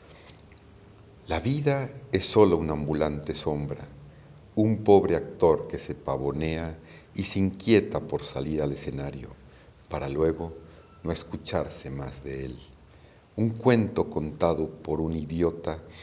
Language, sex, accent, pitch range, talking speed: Spanish, male, Mexican, 75-100 Hz, 125 wpm